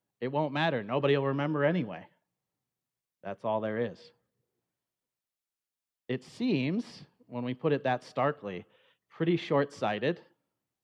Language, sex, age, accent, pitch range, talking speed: English, male, 40-59, American, 110-145 Hz, 115 wpm